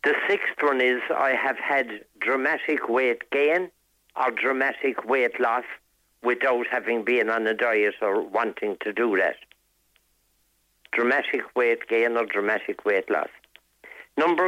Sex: male